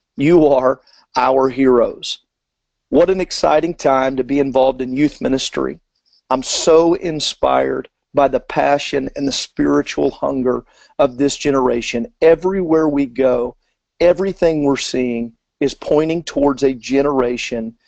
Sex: male